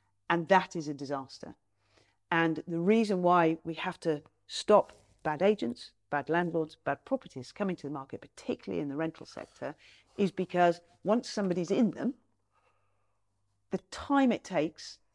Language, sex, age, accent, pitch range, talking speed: English, female, 40-59, British, 145-195 Hz, 150 wpm